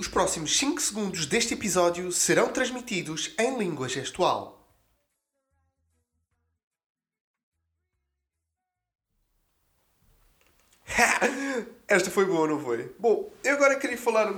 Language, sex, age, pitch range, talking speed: Portuguese, male, 20-39, 140-220 Hz, 90 wpm